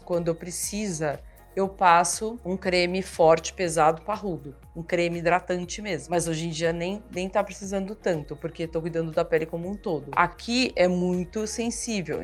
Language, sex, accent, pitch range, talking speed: Portuguese, female, Brazilian, 170-205 Hz, 170 wpm